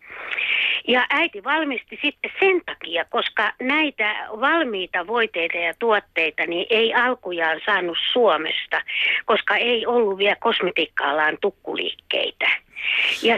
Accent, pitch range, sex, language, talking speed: native, 215-300 Hz, female, Finnish, 110 wpm